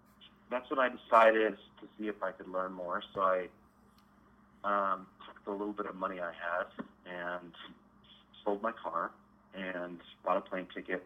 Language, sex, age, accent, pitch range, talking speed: English, male, 30-49, American, 90-105 Hz, 170 wpm